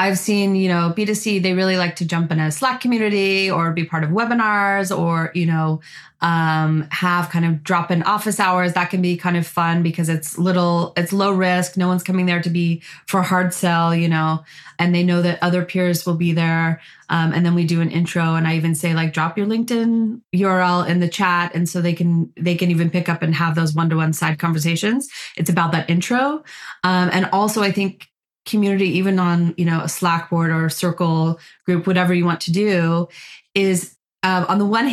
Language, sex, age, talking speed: English, female, 20-39, 215 wpm